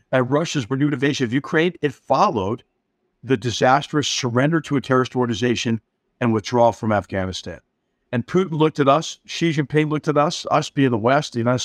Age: 50-69